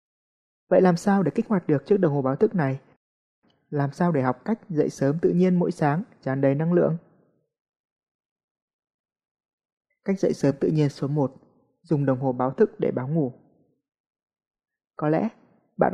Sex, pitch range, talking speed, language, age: male, 135-180 Hz, 175 wpm, Vietnamese, 20-39